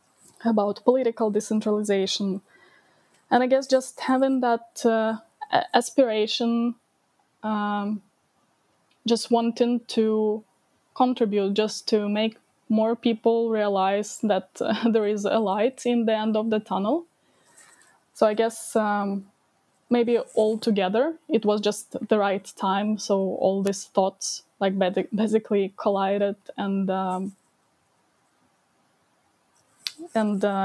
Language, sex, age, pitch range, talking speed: English, female, 10-29, 200-230 Hz, 115 wpm